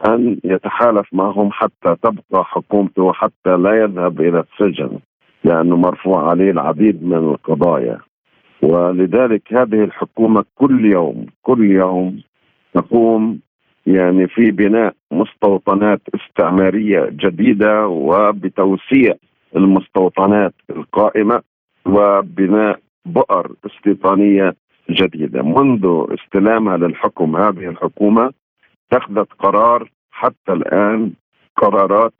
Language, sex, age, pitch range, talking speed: Arabic, male, 50-69, 95-110 Hz, 90 wpm